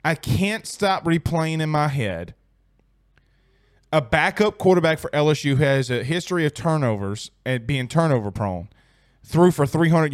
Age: 20-39